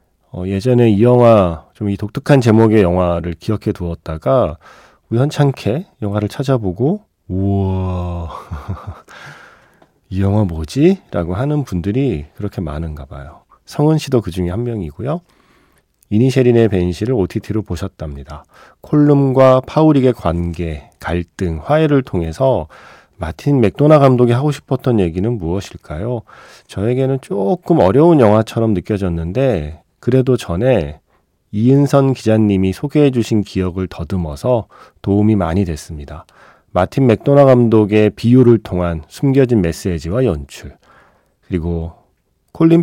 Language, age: Korean, 40-59